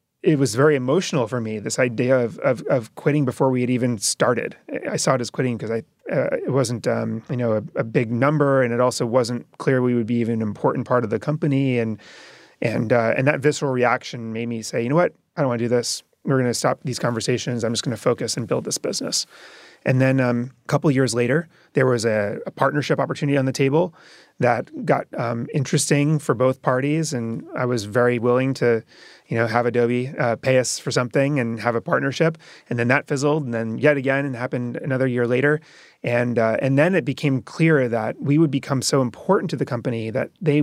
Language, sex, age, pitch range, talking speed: English, male, 30-49, 120-145 Hz, 230 wpm